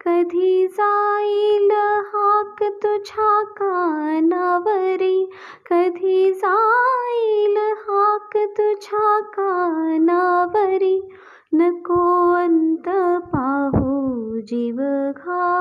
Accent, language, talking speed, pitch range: native, Marathi, 50 wpm, 340-410 Hz